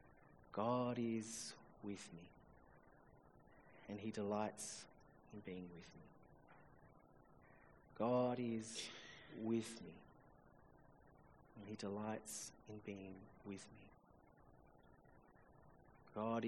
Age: 30-49